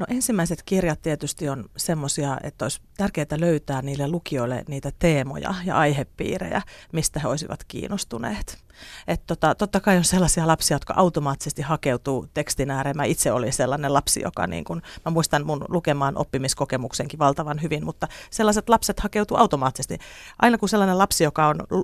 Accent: native